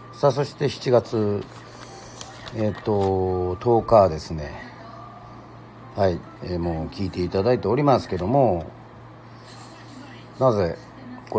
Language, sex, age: Japanese, male, 40-59